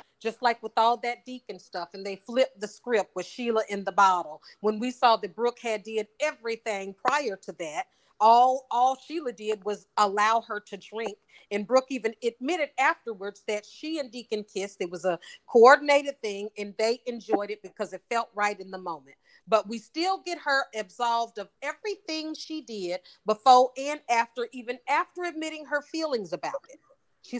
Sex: female